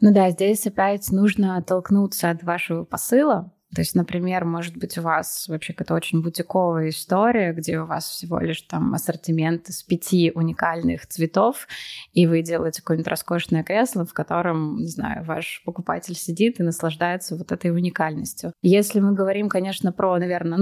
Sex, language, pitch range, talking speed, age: female, Russian, 170-195 Hz, 165 wpm, 20-39